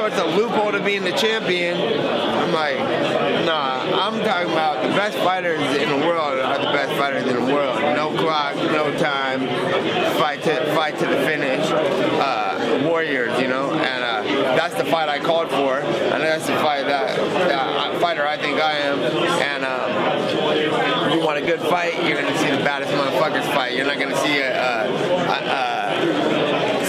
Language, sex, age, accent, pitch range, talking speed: English, male, 30-49, American, 150-195 Hz, 175 wpm